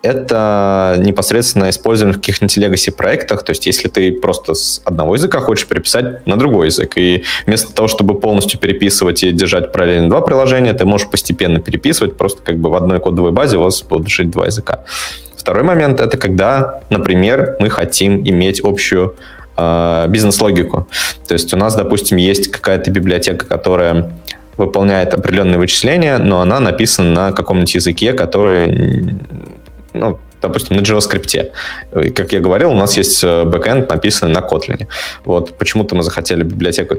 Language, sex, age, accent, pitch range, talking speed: Russian, male, 20-39, native, 90-105 Hz, 155 wpm